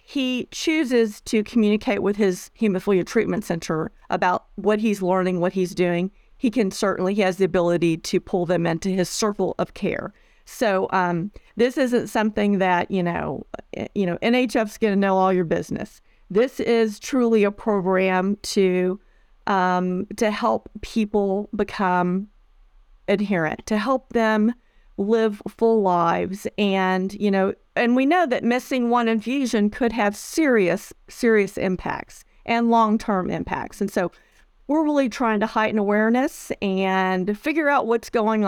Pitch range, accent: 185-230 Hz, American